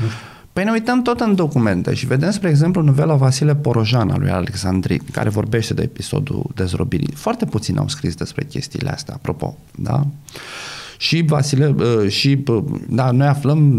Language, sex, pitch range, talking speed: Romanian, male, 115-160 Hz, 155 wpm